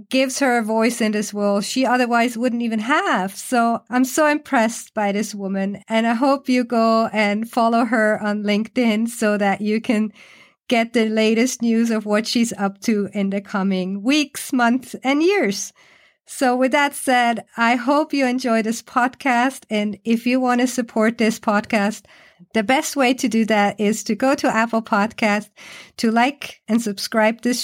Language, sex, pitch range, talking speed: English, female, 210-245 Hz, 180 wpm